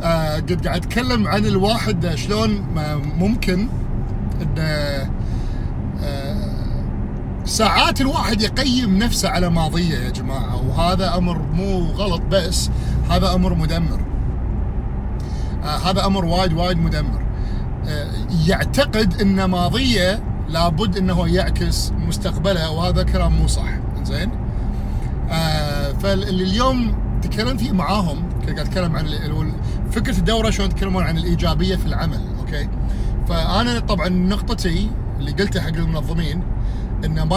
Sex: male